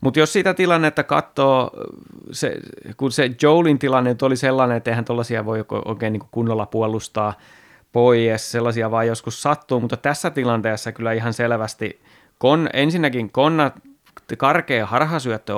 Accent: native